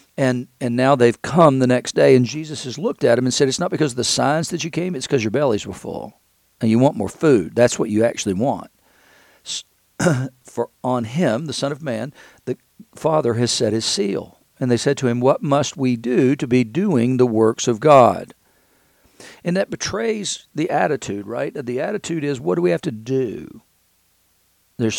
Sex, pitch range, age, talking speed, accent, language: male, 120-145 Hz, 50-69, 205 wpm, American, English